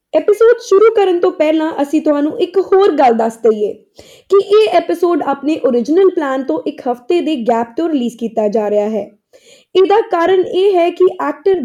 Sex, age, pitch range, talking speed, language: female, 20-39, 265-360 Hz, 180 wpm, Punjabi